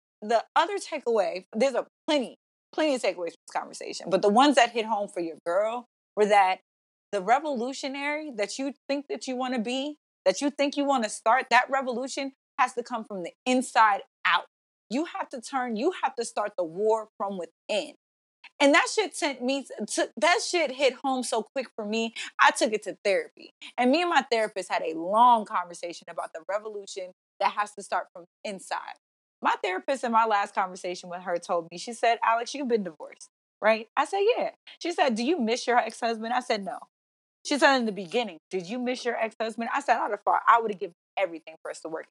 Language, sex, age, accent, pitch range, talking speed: English, female, 20-39, American, 205-280 Hz, 220 wpm